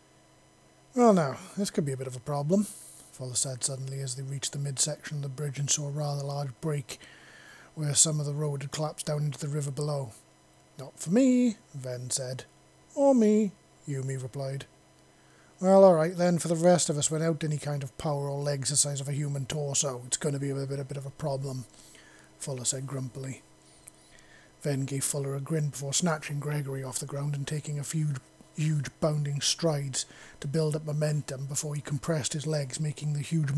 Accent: British